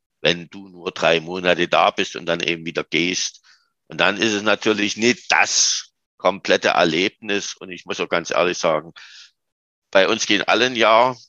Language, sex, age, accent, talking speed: German, male, 60-79, German, 180 wpm